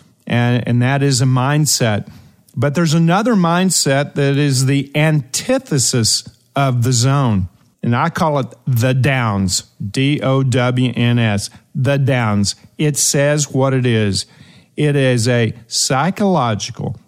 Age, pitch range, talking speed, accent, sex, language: 50-69, 125-165 Hz, 125 wpm, American, male, English